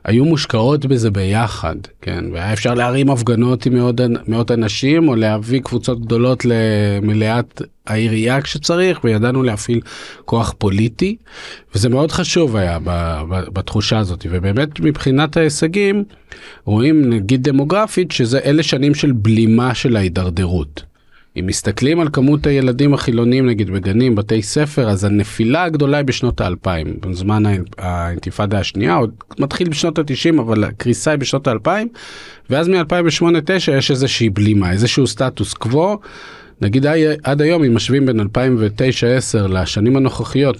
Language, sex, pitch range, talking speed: Hebrew, male, 105-140 Hz, 130 wpm